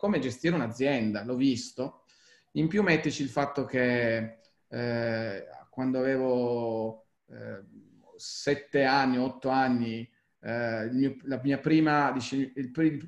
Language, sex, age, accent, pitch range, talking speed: Italian, male, 30-49, native, 120-140 Hz, 115 wpm